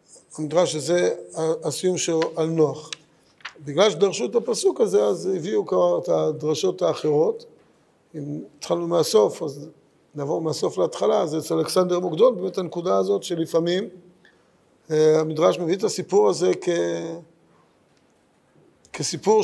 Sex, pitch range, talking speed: male, 165-215 Hz, 115 wpm